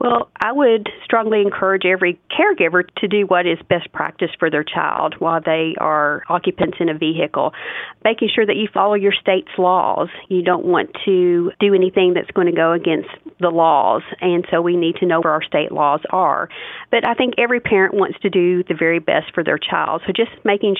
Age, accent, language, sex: 40-59, American, English, female